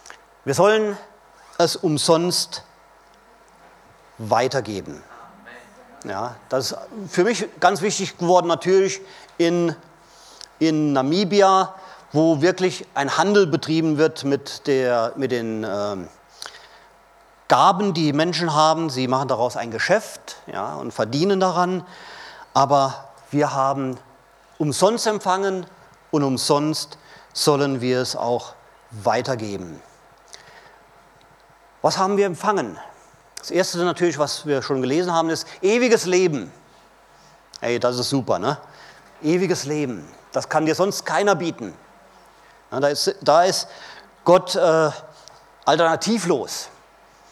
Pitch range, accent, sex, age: 140-185 Hz, German, male, 40-59